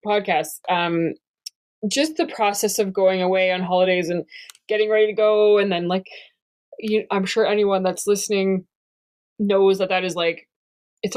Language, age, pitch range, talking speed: English, 20-39, 175-210 Hz, 160 wpm